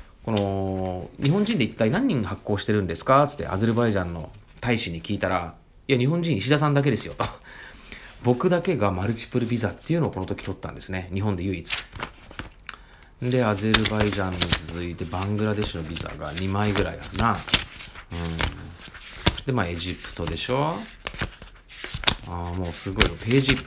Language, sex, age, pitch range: Japanese, male, 30-49, 90-125 Hz